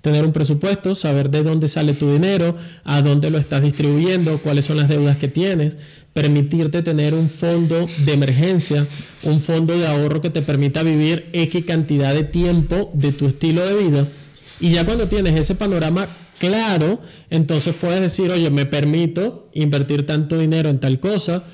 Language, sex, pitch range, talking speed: Spanish, male, 150-190 Hz, 175 wpm